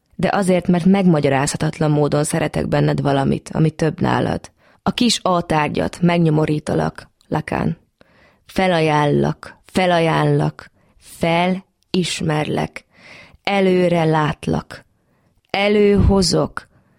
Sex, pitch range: female, 145-180 Hz